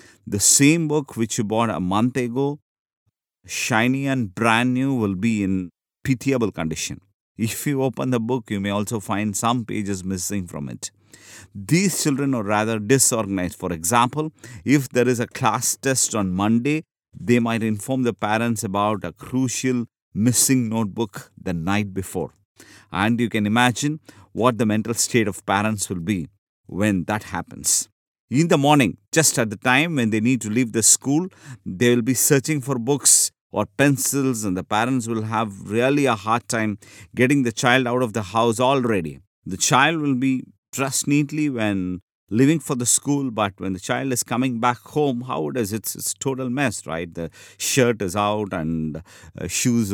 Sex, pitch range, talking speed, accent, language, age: male, 105-130 Hz, 175 wpm, Indian, English, 50-69